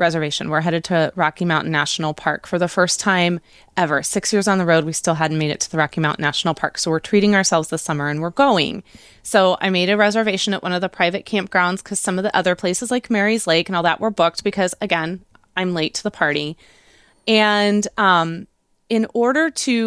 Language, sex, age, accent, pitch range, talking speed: English, female, 20-39, American, 175-225 Hz, 225 wpm